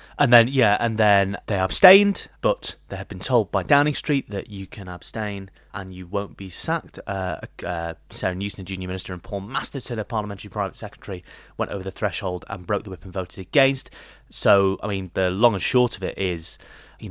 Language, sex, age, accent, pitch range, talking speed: English, male, 30-49, British, 95-110 Hz, 205 wpm